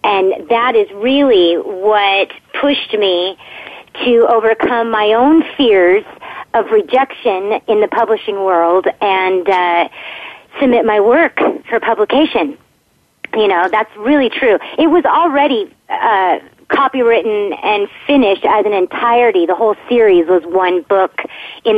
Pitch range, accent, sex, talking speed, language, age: 180-240 Hz, American, female, 130 wpm, English, 30-49